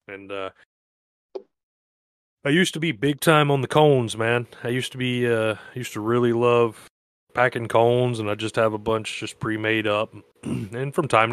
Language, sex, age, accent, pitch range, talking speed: English, male, 30-49, American, 100-115 Hz, 190 wpm